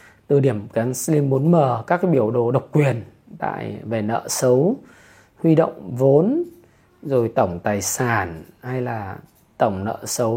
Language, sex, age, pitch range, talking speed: Vietnamese, male, 20-39, 120-155 Hz, 155 wpm